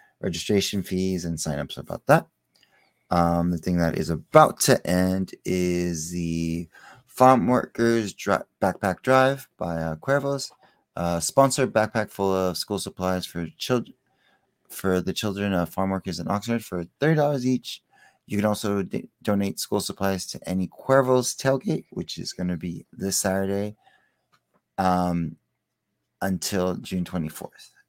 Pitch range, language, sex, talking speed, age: 90-120 Hz, English, male, 145 wpm, 30-49